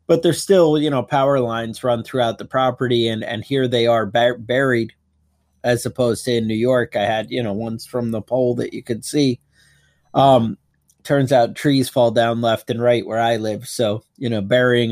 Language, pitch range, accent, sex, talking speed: English, 110-130 Hz, American, male, 210 wpm